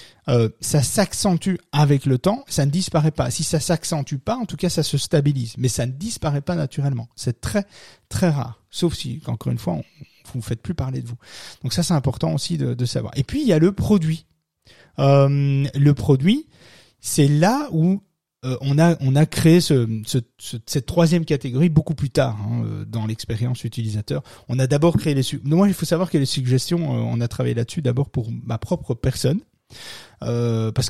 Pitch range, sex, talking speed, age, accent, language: 120-160 Hz, male, 210 wpm, 30-49, French, French